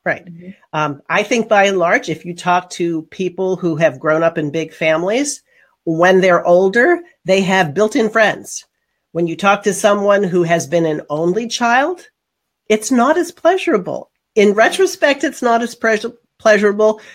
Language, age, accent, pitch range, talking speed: English, 50-69, American, 160-215 Hz, 165 wpm